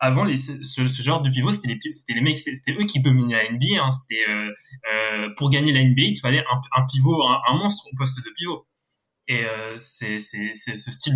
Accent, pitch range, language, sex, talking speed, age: French, 125-145 Hz, French, male, 185 wpm, 20-39